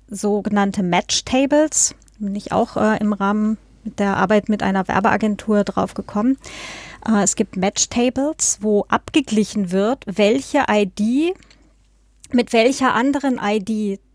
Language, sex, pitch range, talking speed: German, female, 210-245 Hz, 125 wpm